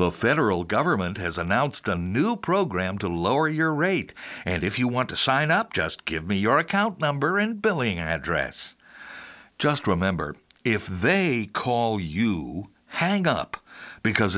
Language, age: English, 60-79